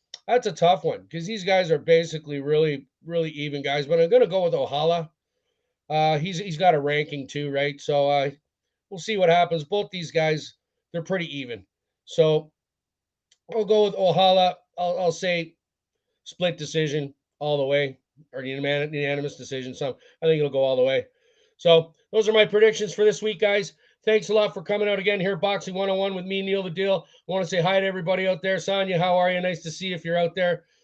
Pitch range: 160-205 Hz